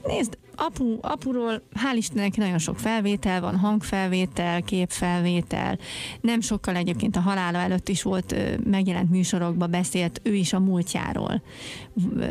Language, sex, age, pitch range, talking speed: Hungarian, female, 30-49, 185-225 Hz, 125 wpm